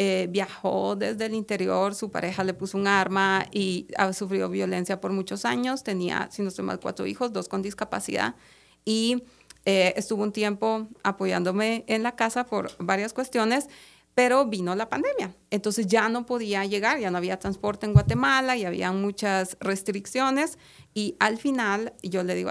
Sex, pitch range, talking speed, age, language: female, 195-235 Hz, 175 wpm, 30-49, Spanish